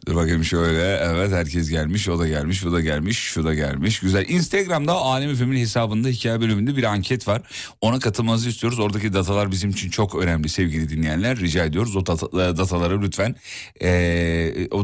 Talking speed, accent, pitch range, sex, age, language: 175 wpm, native, 90-125 Hz, male, 40-59, Turkish